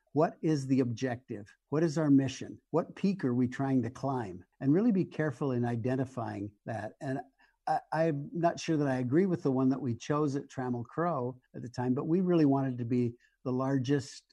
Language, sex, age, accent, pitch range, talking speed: English, male, 60-79, American, 125-150 Hz, 205 wpm